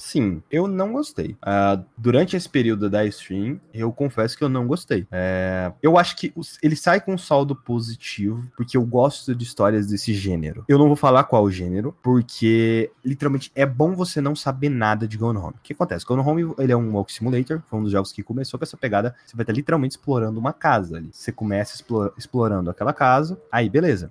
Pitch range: 110-140 Hz